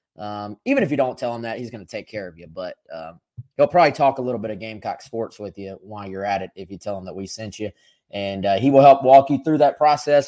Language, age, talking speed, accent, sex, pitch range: English, 20-39, 290 wpm, American, male, 105-130 Hz